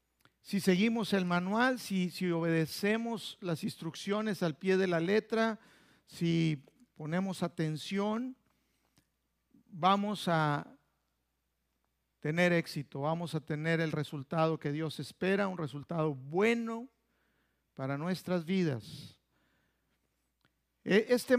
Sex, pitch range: male, 150-205 Hz